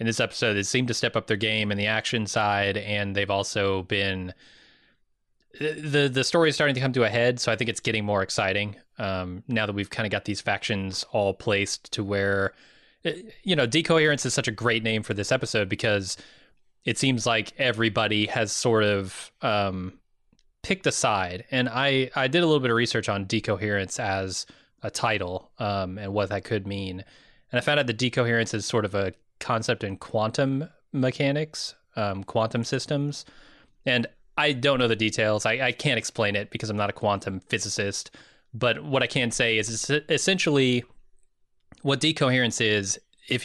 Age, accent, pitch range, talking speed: 20-39, American, 105-130 Hz, 190 wpm